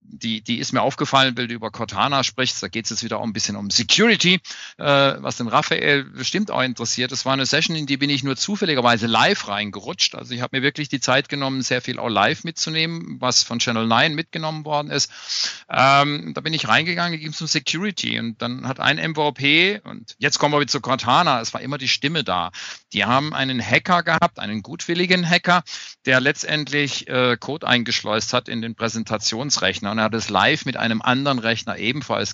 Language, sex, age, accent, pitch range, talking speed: German, male, 50-69, German, 115-150 Hz, 210 wpm